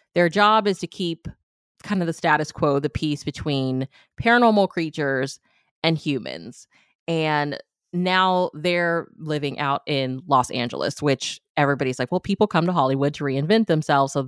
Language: English